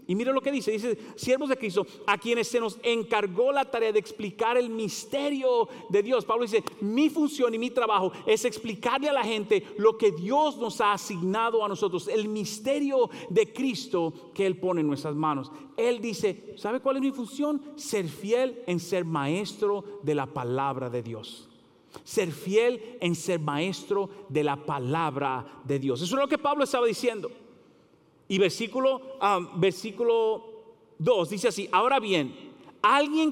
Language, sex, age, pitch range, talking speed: English, male, 40-59, 160-245 Hz, 170 wpm